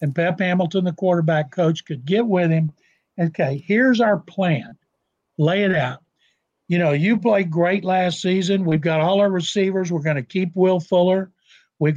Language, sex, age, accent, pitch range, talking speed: English, male, 60-79, American, 165-195 Hz, 180 wpm